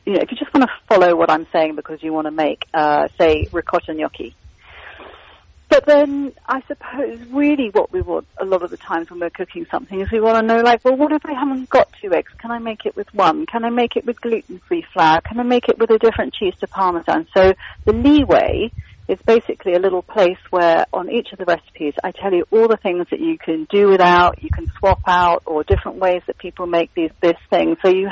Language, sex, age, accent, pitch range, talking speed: English, female, 40-59, British, 170-245 Hz, 245 wpm